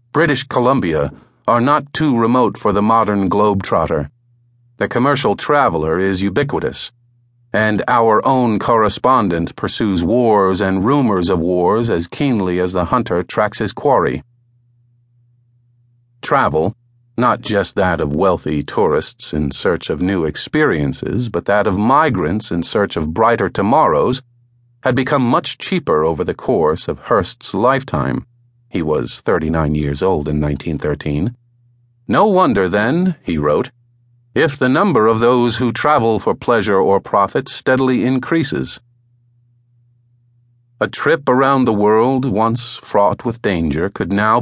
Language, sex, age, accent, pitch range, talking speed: English, male, 50-69, American, 100-120 Hz, 135 wpm